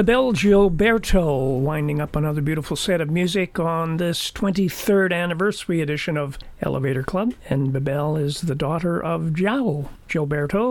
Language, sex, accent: English, male, American